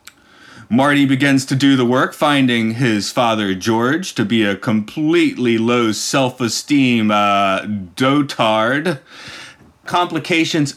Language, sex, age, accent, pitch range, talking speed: English, male, 30-49, American, 120-150 Hz, 100 wpm